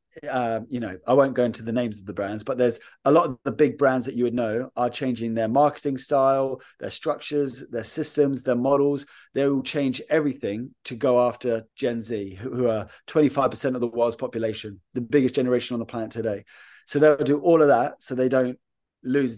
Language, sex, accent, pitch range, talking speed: English, male, British, 115-135 Hz, 215 wpm